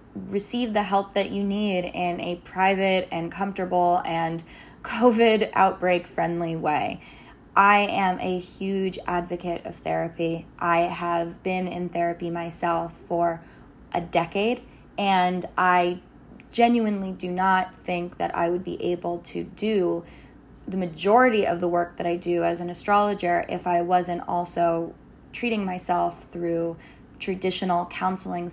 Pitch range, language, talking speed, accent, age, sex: 170-200 Hz, English, 135 wpm, American, 10-29, female